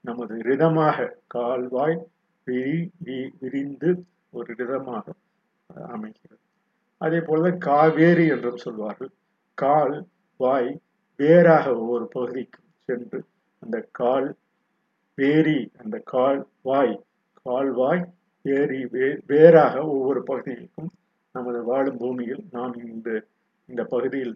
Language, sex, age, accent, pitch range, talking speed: Tamil, male, 50-69, native, 125-170 Hz, 85 wpm